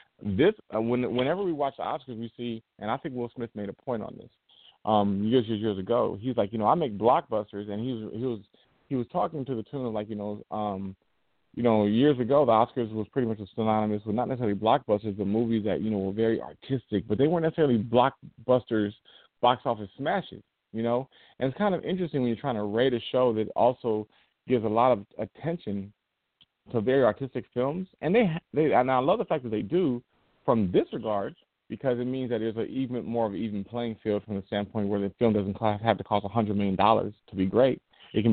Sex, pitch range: male, 105-125 Hz